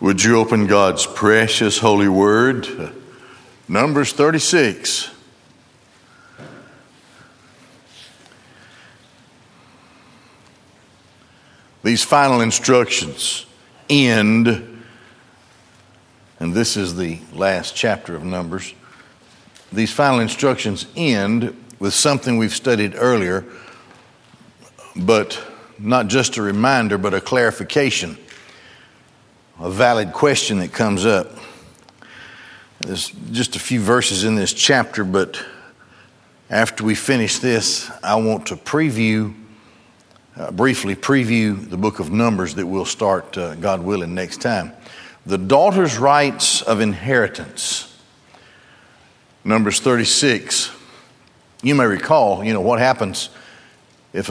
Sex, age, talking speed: male, 60-79, 100 wpm